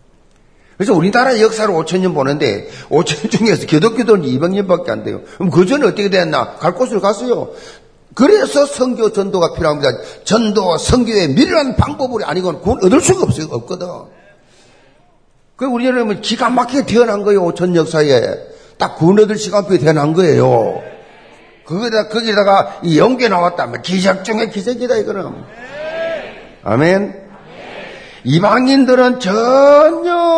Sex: male